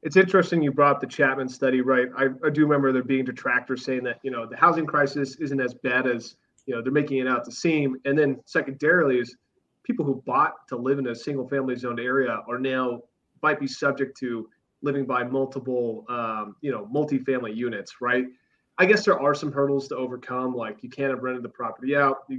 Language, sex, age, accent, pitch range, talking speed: English, male, 30-49, American, 125-145 Hz, 215 wpm